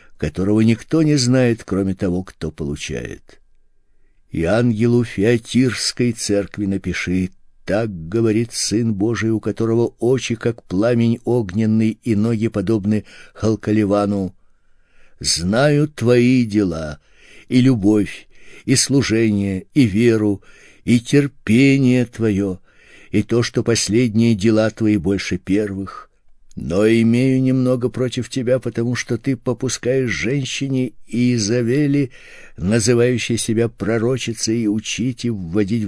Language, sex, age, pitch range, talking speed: Russian, male, 60-79, 105-120 Hz, 110 wpm